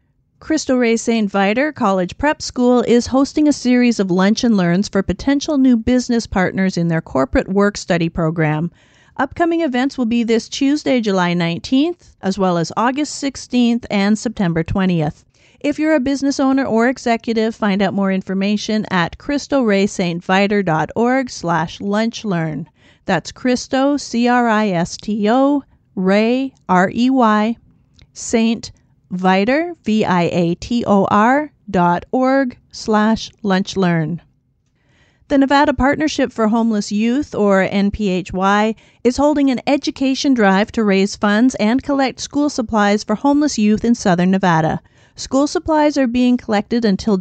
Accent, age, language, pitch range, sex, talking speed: American, 40-59, English, 190-260 Hz, female, 125 wpm